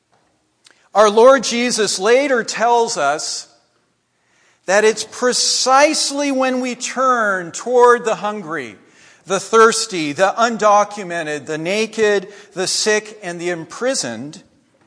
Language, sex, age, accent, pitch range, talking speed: English, male, 40-59, American, 150-220 Hz, 105 wpm